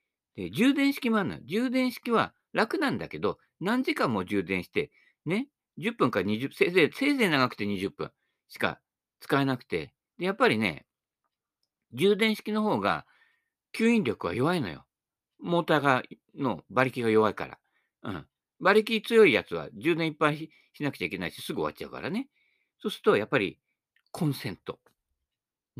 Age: 50-69